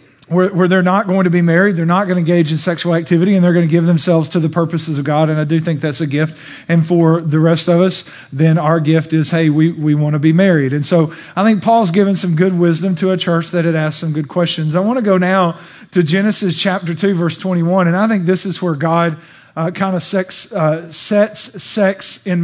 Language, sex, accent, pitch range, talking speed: English, male, American, 170-195 Hz, 265 wpm